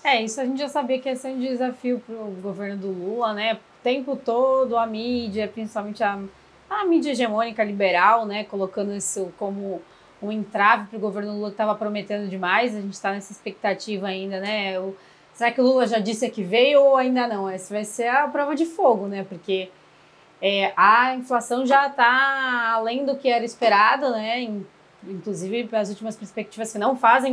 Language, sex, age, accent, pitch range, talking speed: Portuguese, female, 20-39, Brazilian, 205-255 Hz, 195 wpm